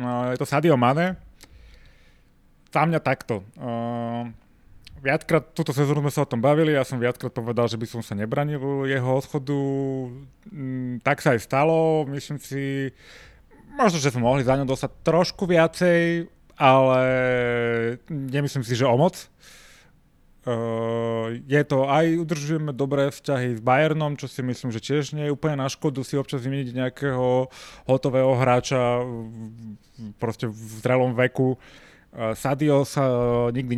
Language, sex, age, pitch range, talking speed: Slovak, male, 30-49, 115-140 Hz, 140 wpm